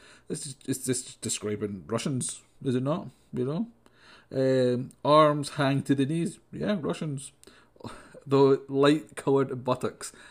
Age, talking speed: 30-49, 120 wpm